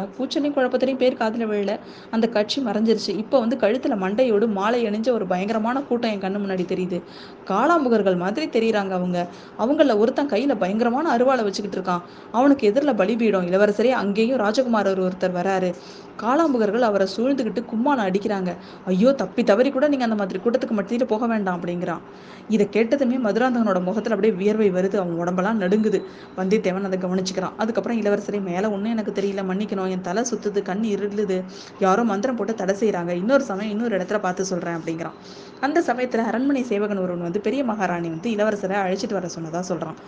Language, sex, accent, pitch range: Tamil, female, native, 185-235 Hz